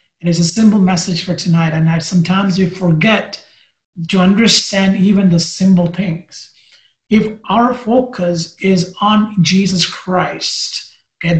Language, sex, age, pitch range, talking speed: English, male, 30-49, 180-205 Hz, 140 wpm